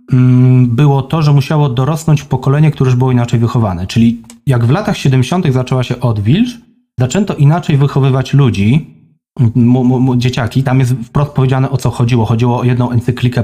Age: 30-49